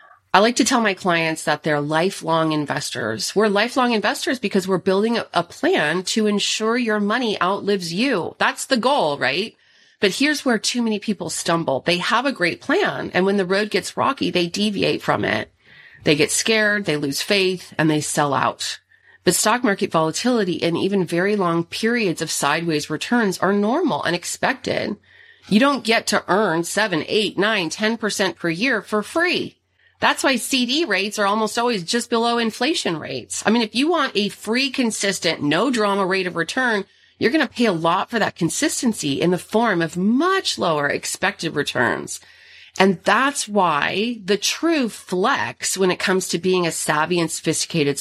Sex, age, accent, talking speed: female, 30-49, American, 180 wpm